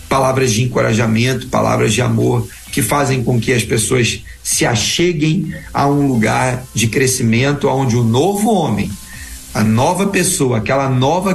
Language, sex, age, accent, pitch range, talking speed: Portuguese, male, 40-59, Brazilian, 115-150 Hz, 150 wpm